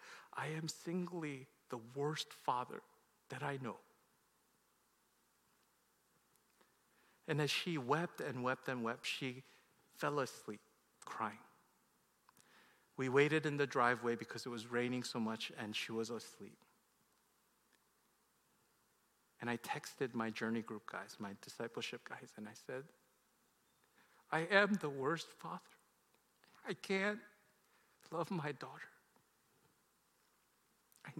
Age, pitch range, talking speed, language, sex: 50-69, 125-185 Hz, 115 wpm, English, male